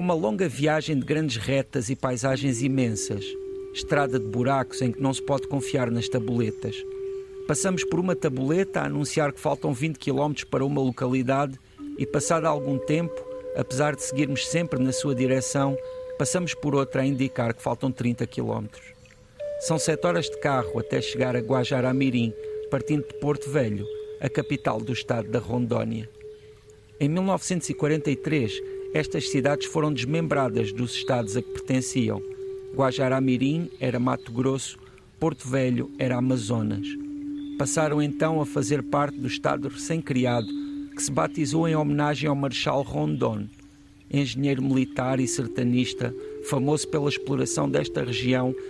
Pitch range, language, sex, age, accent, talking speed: 130-155 Hz, Portuguese, male, 50-69, Portuguese, 145 wpm